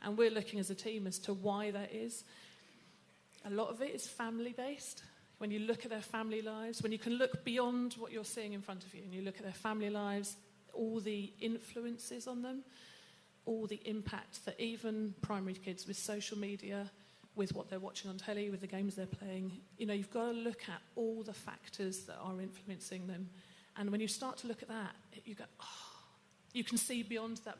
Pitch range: 200-225 Hz